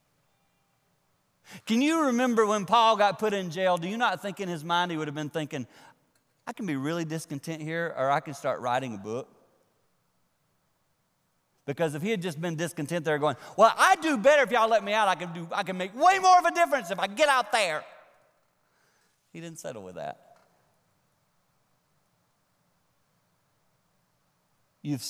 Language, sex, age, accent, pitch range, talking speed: English, male, 40-59, American, 125-210 Hz, 175 wpm